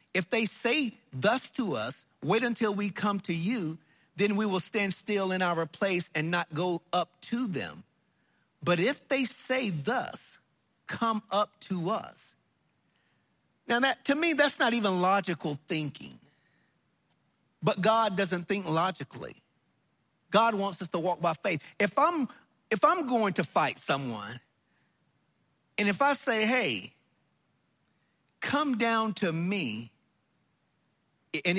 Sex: male